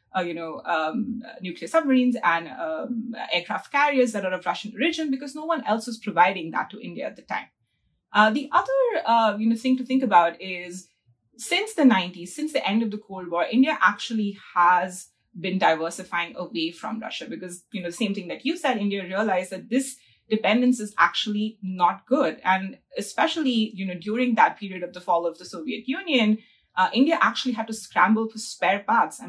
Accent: Indian